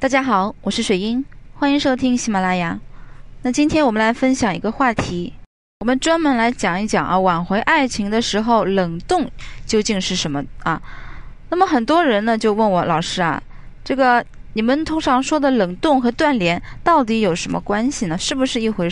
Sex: female